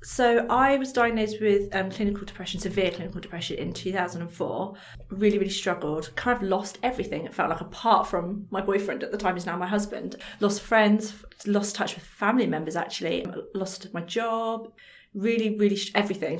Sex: female